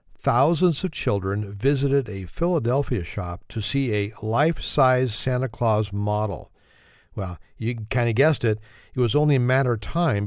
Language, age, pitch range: English, 50-69, 105-135 Hz